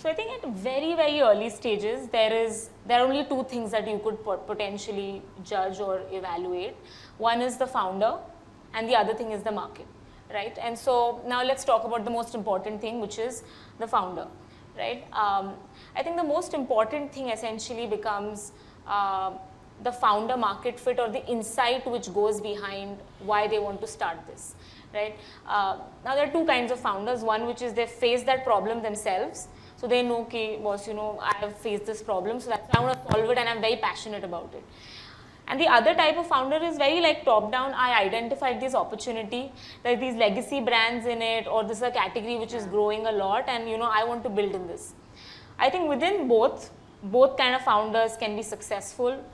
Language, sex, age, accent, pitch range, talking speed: English, female, 20-39, Indian, 210-255 Hz, 205 wpm